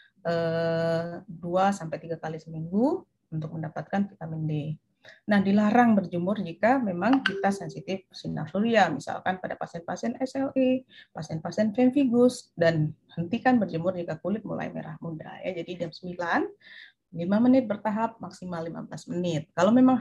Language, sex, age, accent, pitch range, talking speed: Indonesian, female, 30-49, native, 165-230 Hz, 125 wpm